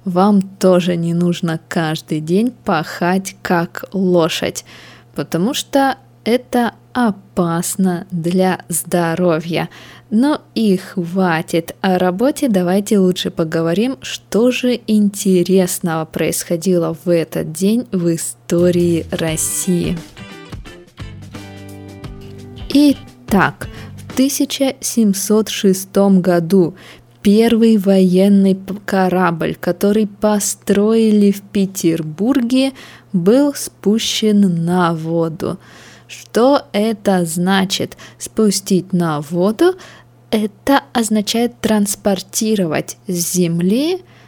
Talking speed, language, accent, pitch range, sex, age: 80 wpm, Russian, native, 170-215 Hz, female, 20-39